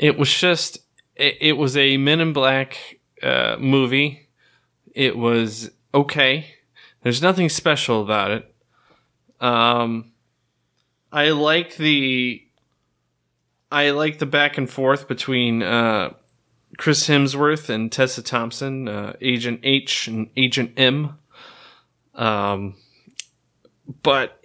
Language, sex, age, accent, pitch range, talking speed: English, male, 20-39, American, 115-145 Hz, 110 wpm